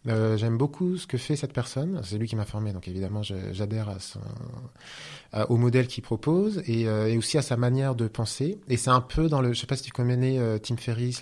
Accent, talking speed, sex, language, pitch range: French, 250 wpm, male, French, 105-125 Hz